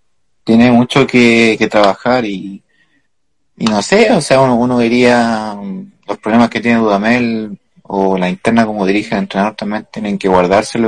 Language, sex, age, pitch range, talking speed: Spanish, male, 30-49, 105-125 Hz, 165 wpm